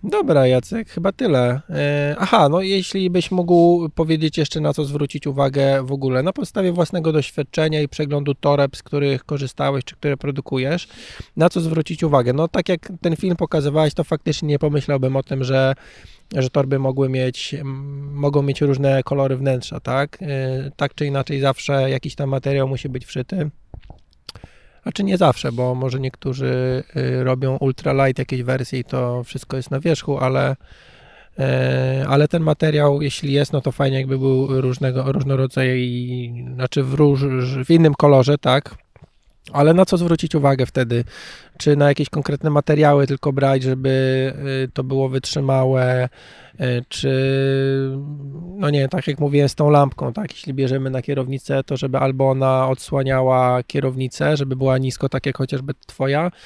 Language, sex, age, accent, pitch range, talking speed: Polish, male, 20-39, native, 130-150 Hz, 155 wpm